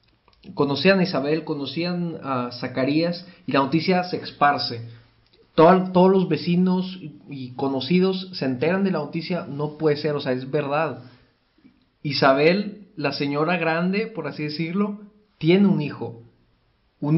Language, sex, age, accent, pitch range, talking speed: Spanish, male, 40-59, Mexican, 135-180 Hz, 140 wpm